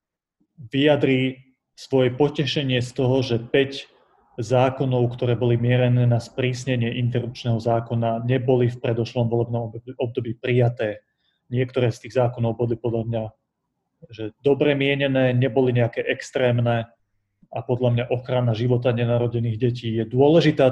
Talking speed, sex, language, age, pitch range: 125 wpm, male, Slovak, 30-49, 120-140 Hz